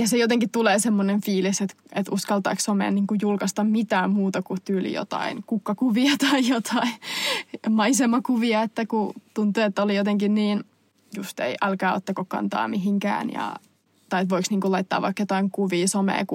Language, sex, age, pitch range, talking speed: Finnish, female, 20-39, 200-235 Hz, 160 wpm